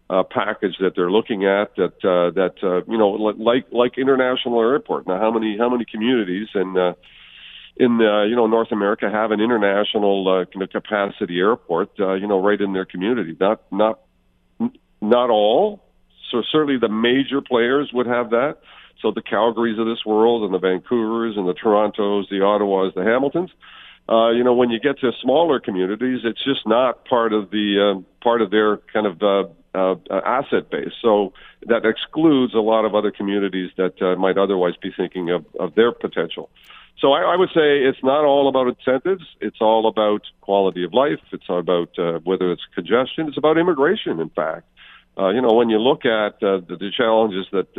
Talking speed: 195 wpm